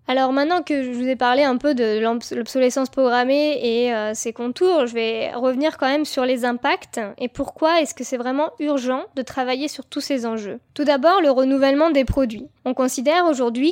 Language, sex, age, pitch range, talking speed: French, female, 20-39, 245-290 Hz, 195 wpm